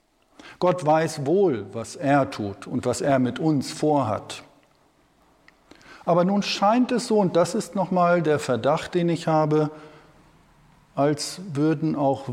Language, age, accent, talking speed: German, 50-69, German, 140 wpm